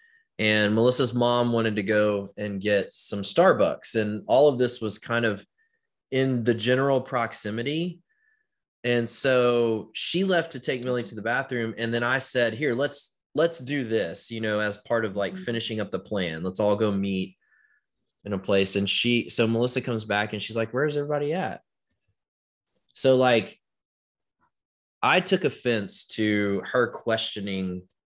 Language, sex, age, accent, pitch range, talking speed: English, male, 20-39, American, 100-125 Hz, 165 wpm